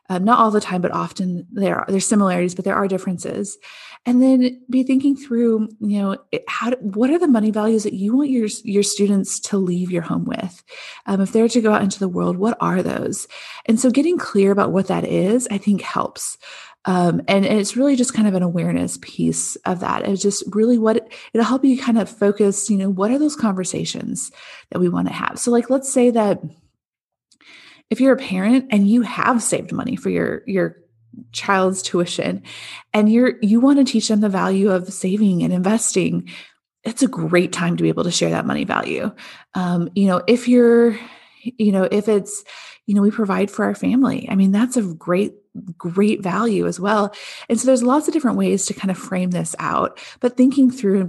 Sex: female